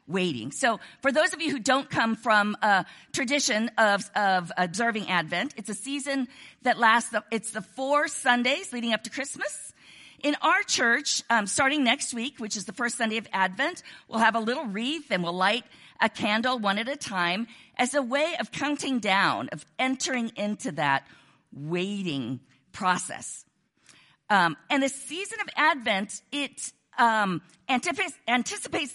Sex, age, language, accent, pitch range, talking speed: female, 50-69, English, American, 210-280 Hz, 165 wpm